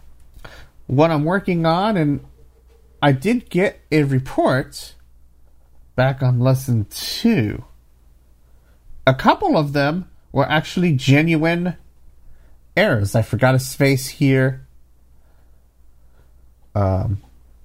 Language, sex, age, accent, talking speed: English, male, 40-59, American, 95 wpm